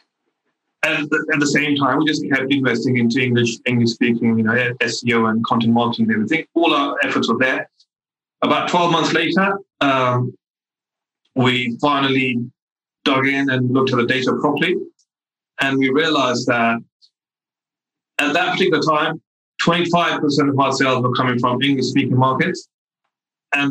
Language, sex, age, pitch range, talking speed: English, male, 30-49, 120-145 Hz, 145 wpm